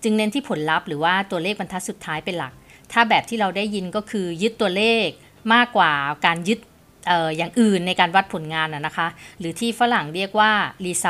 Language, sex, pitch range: Thai, female, 165-215 Hz